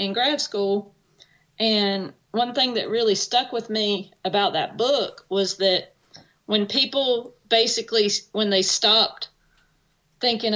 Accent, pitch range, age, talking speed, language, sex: American, 185-230 Hz, 40-59, 130 wpm, English, female